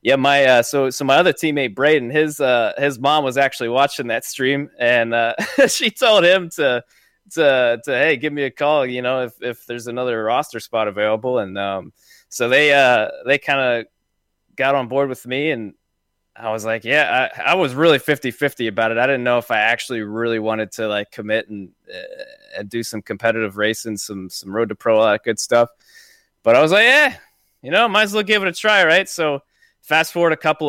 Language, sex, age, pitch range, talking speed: English, male, 20-39, 110-140 Hz, 225 wpm